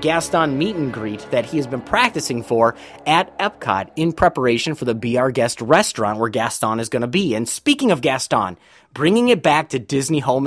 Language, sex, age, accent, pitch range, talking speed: English, male, 30-49, American, 120-165 Hz, 200 wpm